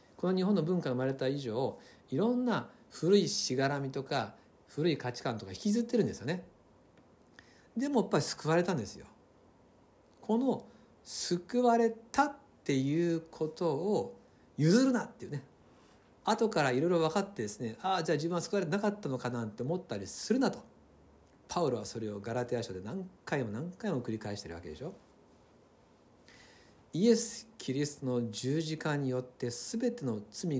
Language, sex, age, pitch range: Japanese, male, 60-79, 125-200 Hz